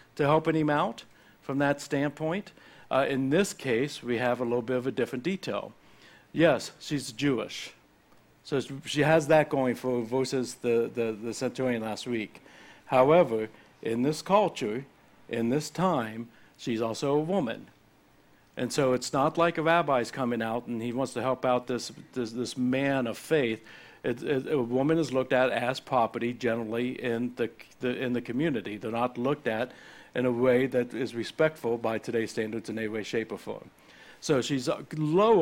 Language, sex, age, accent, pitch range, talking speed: English, male, 60-79, American, 120-150 Hz, 180 wpm